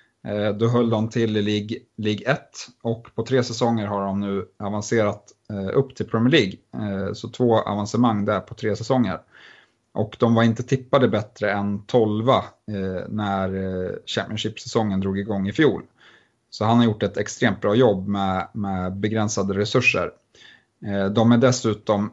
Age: 30-49